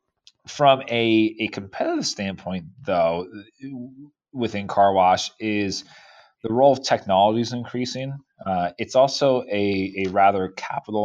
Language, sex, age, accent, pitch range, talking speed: English, male, 30-49, American, 95-115 Hz, 125 wpm